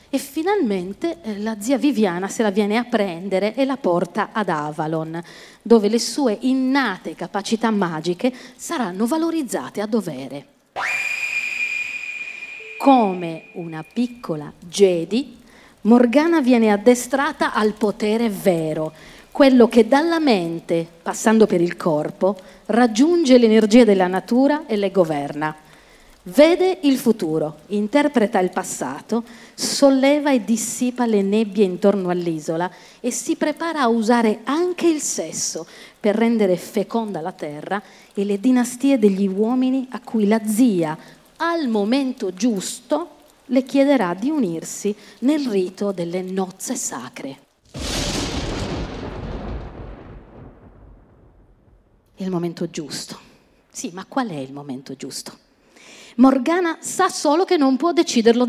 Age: 40-59